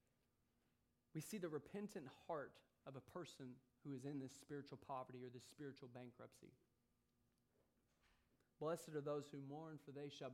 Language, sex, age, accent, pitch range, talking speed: English, male, 30-49, American, 125-155 Hz, 150 wpm